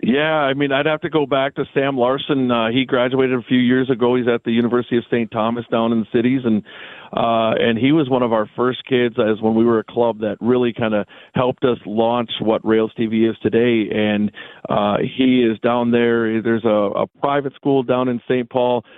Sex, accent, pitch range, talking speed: male, American, 110-125 Hz, 230 wpm